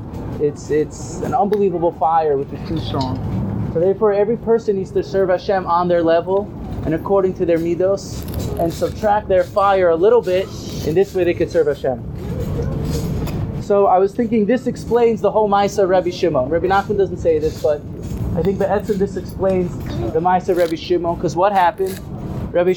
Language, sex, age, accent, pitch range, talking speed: English, male, 20-39, American, 160-200 Hz, 190 wpm